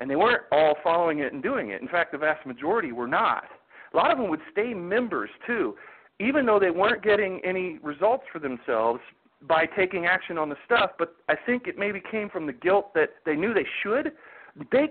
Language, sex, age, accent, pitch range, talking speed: English, male, 40-59, American, 150-205 Hz, 215 wpm